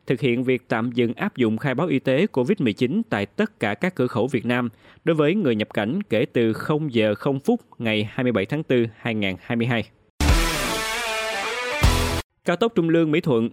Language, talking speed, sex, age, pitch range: Vietnamese, 180 wpm, male, 20-39, 115-150 Hz